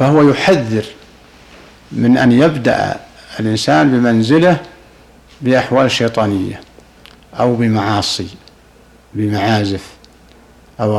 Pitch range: 110-140 Hz